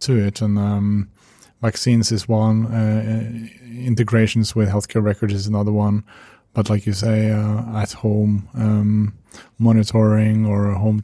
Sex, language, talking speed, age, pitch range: male, English, 140 wpm, 20-39, 105-115 Hz